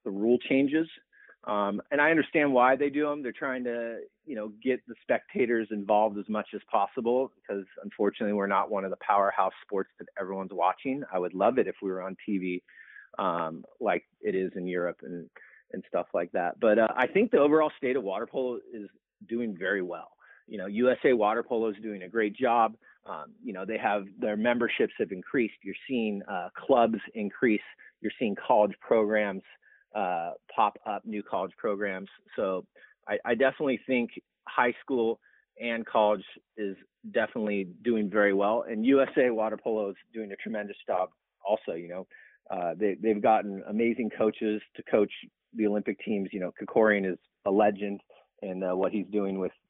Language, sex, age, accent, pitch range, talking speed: English, male, 30-49, American, 100-125 Hz, 185 wpm